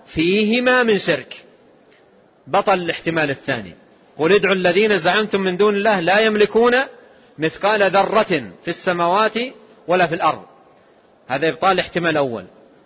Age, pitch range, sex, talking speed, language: 40-59, 185-255 Hz, male, 120 wpm, Arabic